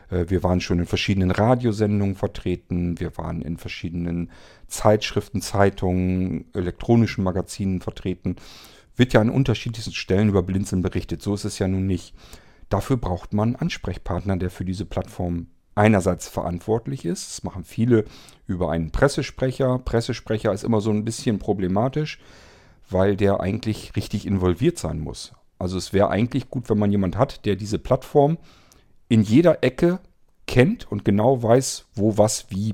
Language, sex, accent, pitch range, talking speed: German, male, German, 90-115 Hz, 155 wpm